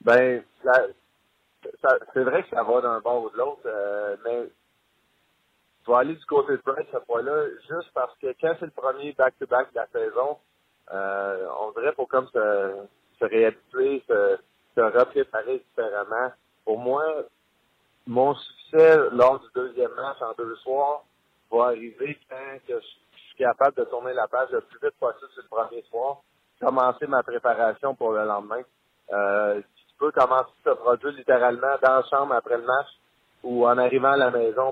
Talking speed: 175 wpm